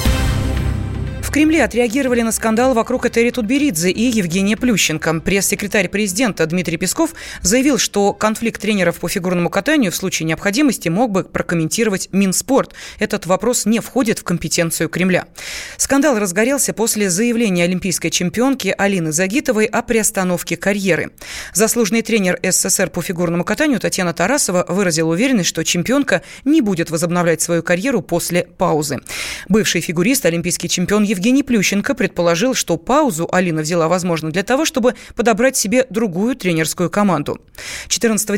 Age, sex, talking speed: 20-39, female, 140 wpm